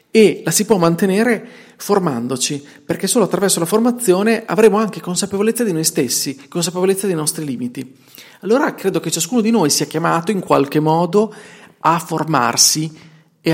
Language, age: Italian, 40-59